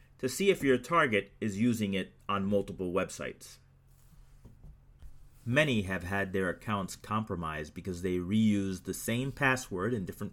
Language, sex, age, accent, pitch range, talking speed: English, male, 30-49, American, 100-130 Hz, 145 wpm